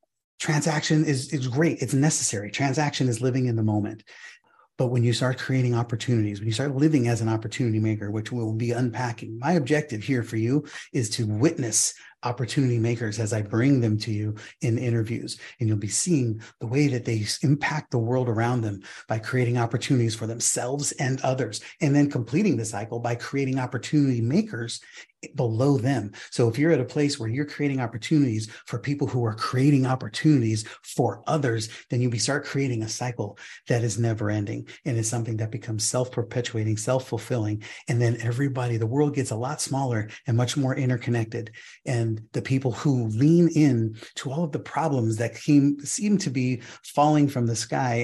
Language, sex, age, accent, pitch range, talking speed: English, male, 30-49, American, 115-145 Hz, 185 wpm